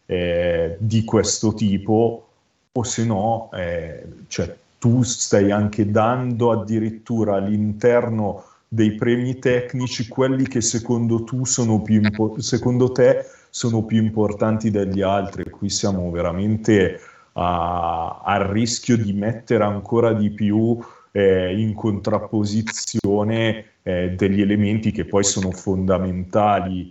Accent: native